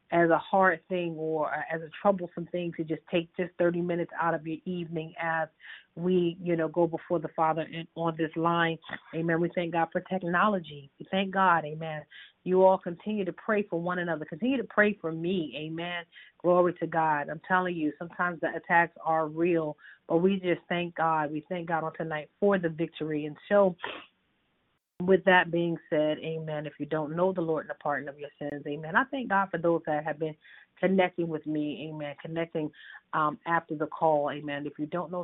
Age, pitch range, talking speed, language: 40-59, 155-175 Hz, 205 wpm, English